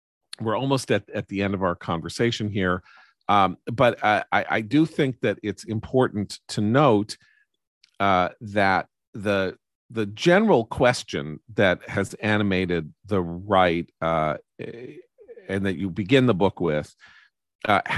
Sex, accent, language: male, American, English